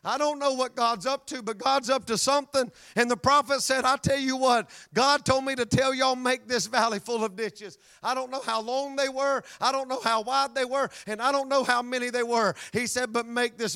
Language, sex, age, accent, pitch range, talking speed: English, male, 40-59, American, 210-255 Hz, 255 wpm